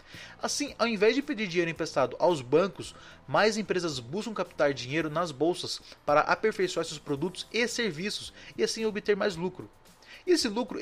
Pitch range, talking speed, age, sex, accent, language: 150-210 Hz, 160 wpm, 30-49, male, Brazilian, Portuguese